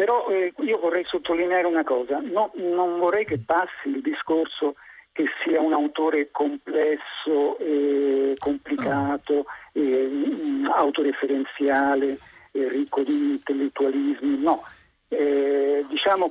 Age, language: 50-69, Italian